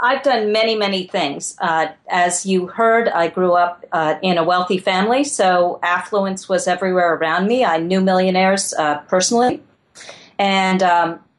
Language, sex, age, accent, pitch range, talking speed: English, female, 40-59, American, 165-200 Hz, 160 wpm